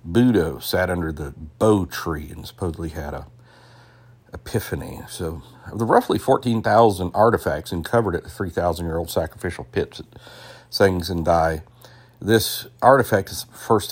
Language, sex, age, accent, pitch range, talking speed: English, male, 50-69, American, 85-115 Hz, 140 wpm